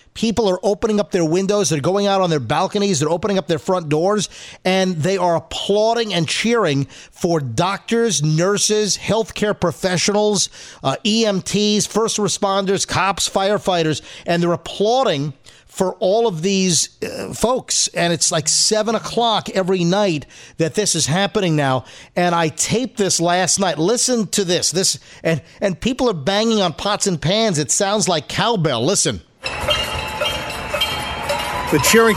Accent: American